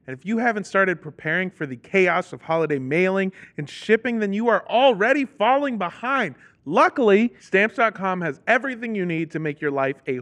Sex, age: male, 30-49